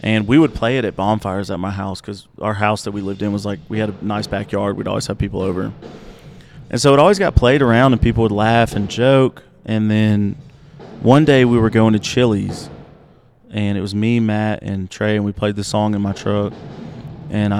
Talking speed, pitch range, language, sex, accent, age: 230 wpm, 100-120 Hz, English, male, American, 30-49